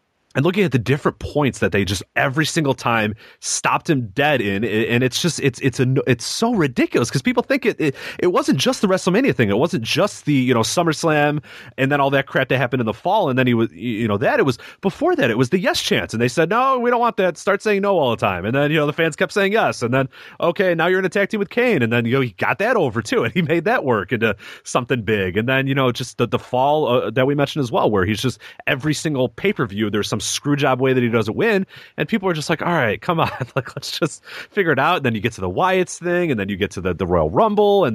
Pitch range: 120-180 Hz